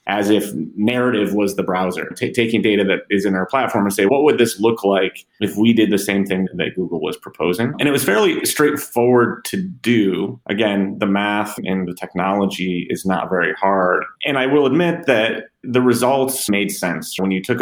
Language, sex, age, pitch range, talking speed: English, male, 30-49, 95-115 Hz, 200 wpm